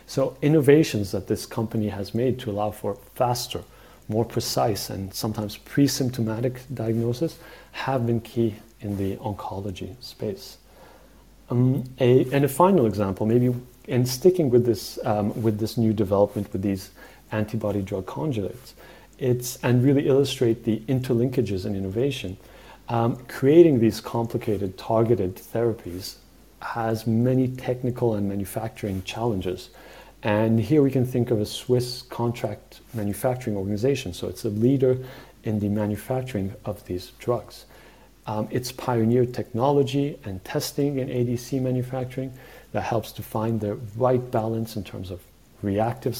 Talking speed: 140 wpm